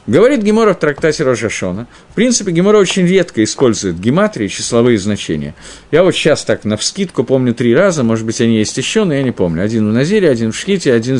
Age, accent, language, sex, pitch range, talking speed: 50-69, native, Russian, male, 115-185 Hz, 210 wpm